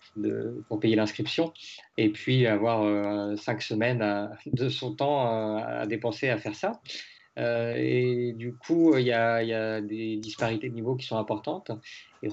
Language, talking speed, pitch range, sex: French, 175 wpm, 110-125 Hz, male